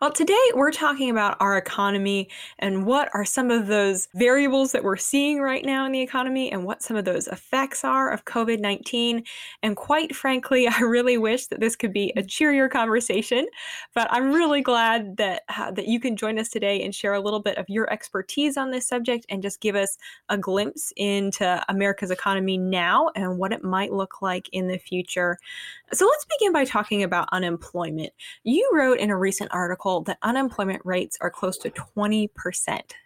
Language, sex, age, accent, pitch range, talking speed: English, female, 10-29, American, 190-250 Hz, 195 wpm